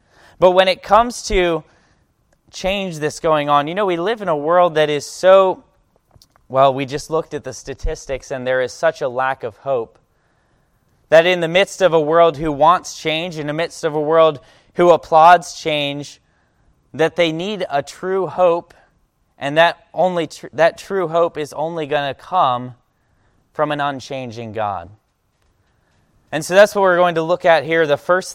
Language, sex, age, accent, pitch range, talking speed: English, male, 20-39, American, 130-165 Hz, 180 wpm